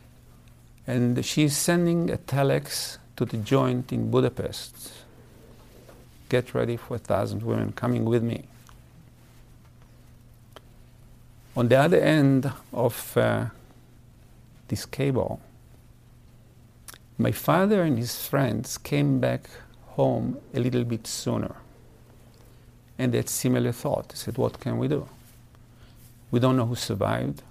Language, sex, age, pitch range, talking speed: English, male, 50-69, 115-130 Hz, 120 wpm